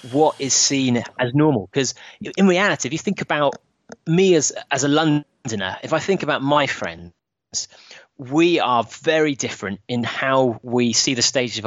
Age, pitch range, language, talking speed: 30-49, 115-155 Hz, English, 175 wpm